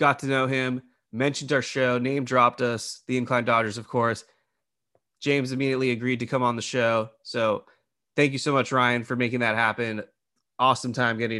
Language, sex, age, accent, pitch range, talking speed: English, male, 20-39, American, 110-125 Hz, 190 wpm